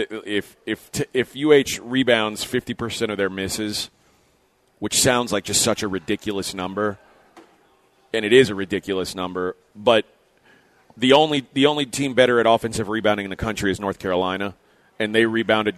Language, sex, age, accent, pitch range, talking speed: English, male, 30-49, American, 100-125 Hz, 165 wpm